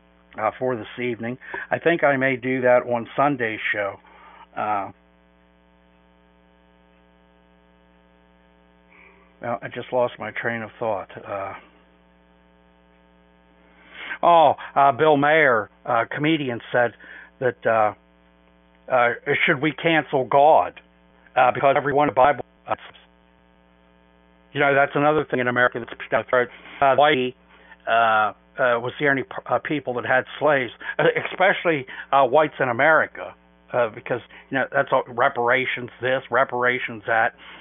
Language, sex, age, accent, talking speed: English, male, 60-79, American, 130 wpm